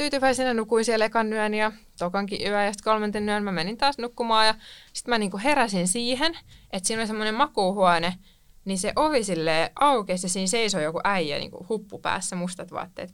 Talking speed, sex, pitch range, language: 175 wpm, female, 175-225 Hz, Finnish